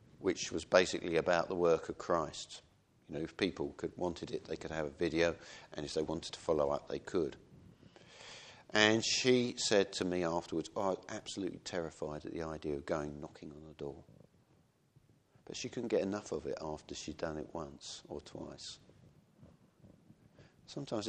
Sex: male